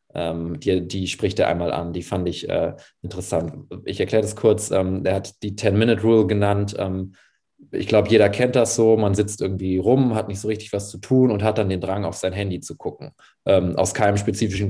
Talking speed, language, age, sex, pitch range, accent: 220 wpm, German, 20-39, male, 95-105 Hz, German